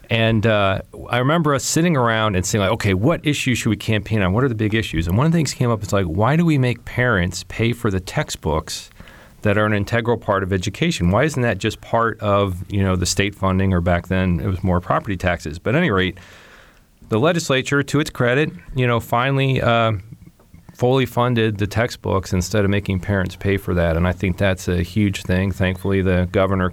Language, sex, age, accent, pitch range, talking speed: English, male, 40-59, American, 95-120 Hz, 225 wpm